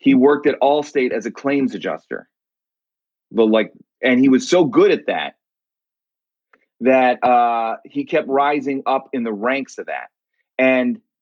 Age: 30-49